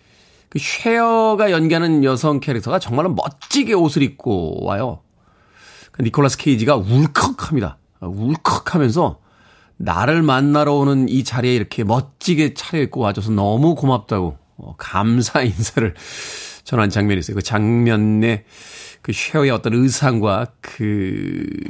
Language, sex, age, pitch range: Korean, male, 40-59, 110-150 Hz